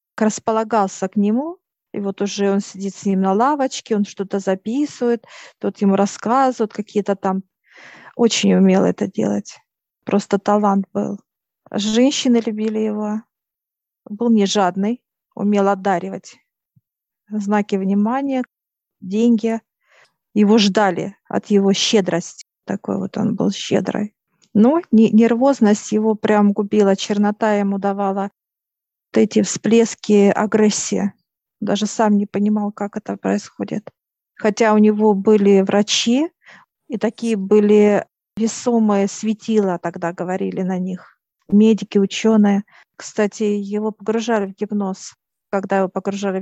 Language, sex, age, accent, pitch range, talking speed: Russian, female, 40-59, native, 200-220 Hz, 120 wpm